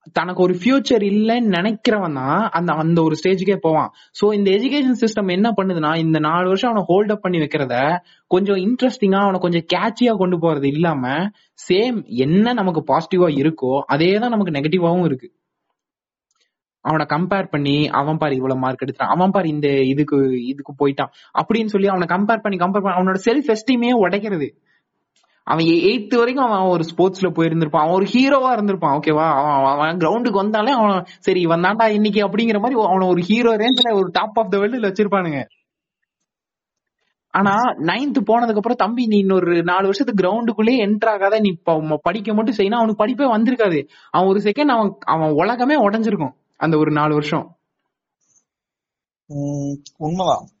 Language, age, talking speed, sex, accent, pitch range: Tamil, 20-39, 90 wpm, male, native, 160-220 Hz